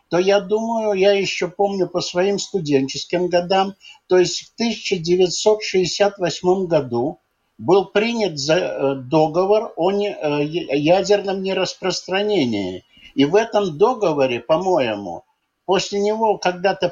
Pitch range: 160-210 Hz